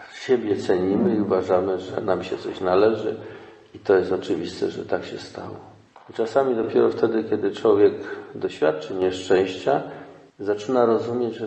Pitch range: 95-150 Hz